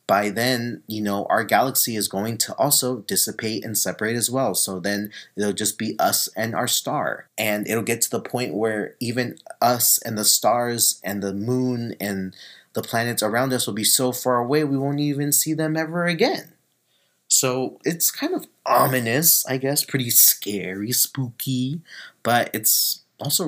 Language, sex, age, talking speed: English, male, 30-49, 180 wpm